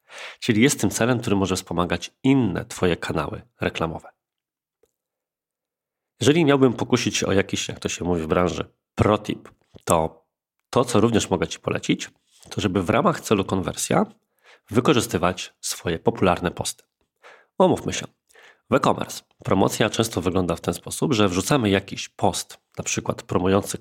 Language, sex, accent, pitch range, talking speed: Polish, male, native, 95-125 Hz, 145 wpm